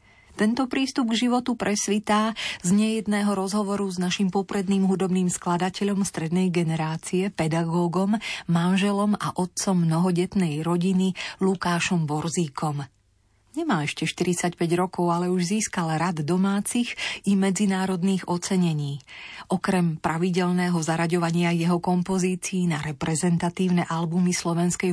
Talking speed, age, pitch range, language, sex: 105 wpm, 30-49, 170-210 Hz, Slovak, female